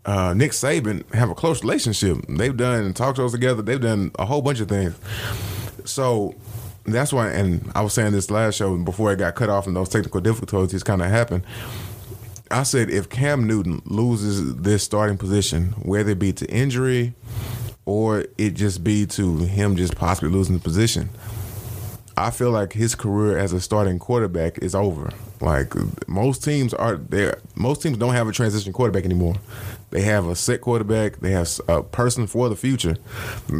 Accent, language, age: American, English, 20-39